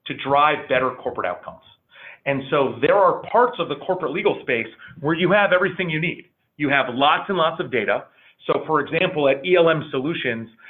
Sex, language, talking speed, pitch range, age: male, English, 190 wpm, 125-165 Hz, 30-49